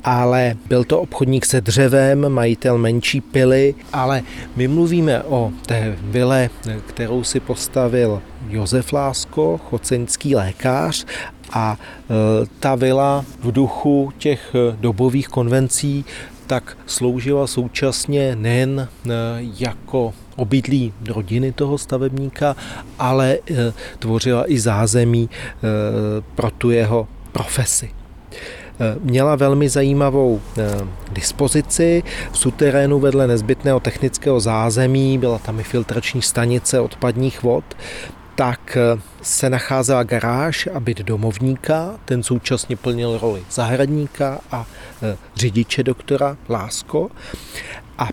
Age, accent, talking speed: 30-49, native, 100 wpm